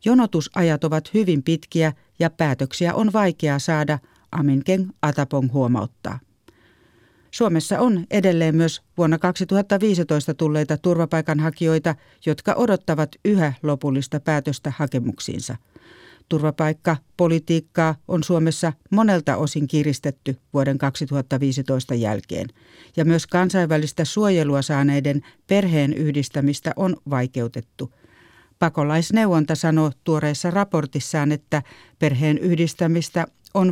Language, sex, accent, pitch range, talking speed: Finnish, female, native, 145-180 Hz, 95 wpm